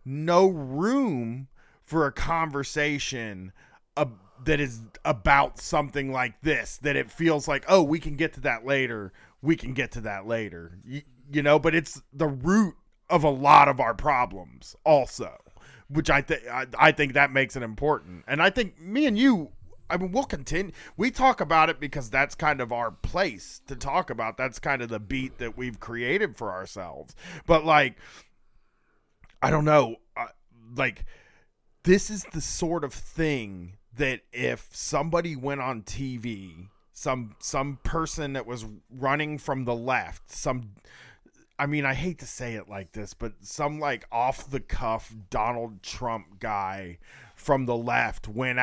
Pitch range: 115-155 Hz